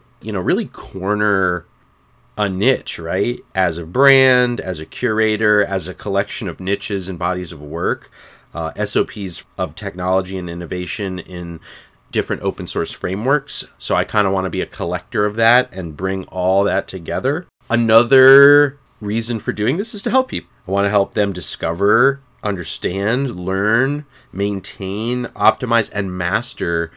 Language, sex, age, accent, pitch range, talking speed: English, male, 30-49, American, 90-115 Hz, 150 wpm